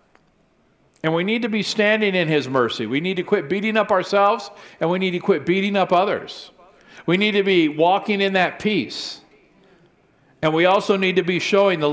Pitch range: 175-225 Hz